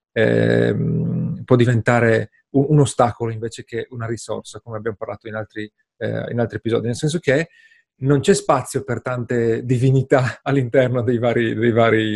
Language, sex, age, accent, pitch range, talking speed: Italian, male, 40-59, native, 120-150 Hz, 160 wpm